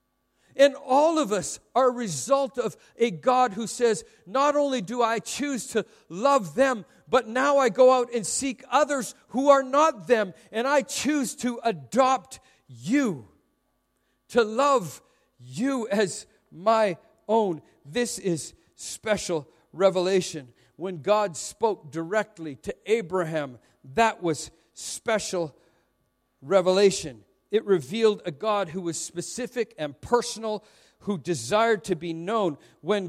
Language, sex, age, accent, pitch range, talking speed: English, male, 50-69, American, 175-245 Hz, 130 wpm